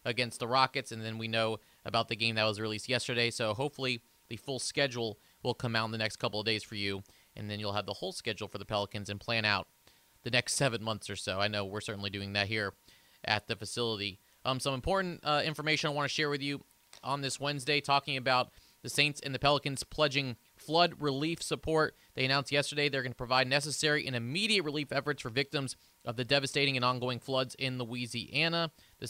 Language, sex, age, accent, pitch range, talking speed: English, male, 30-49, American, 115-145 Hz, 220 wpm